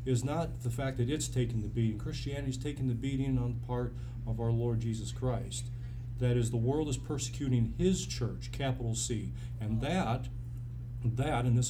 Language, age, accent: English, 40-59, American